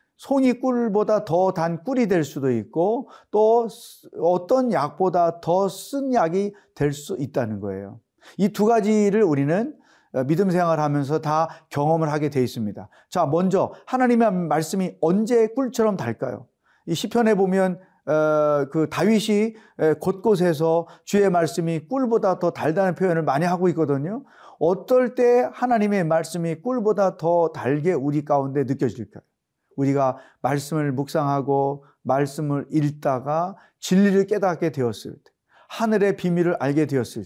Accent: native